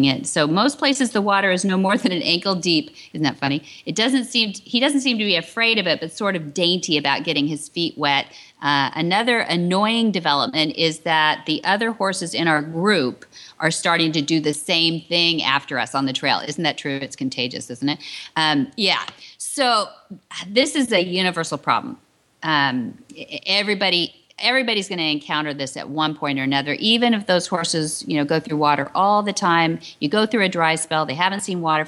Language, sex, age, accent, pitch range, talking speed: English, female, 40-59, American, 150-200 Hz, 205 wpm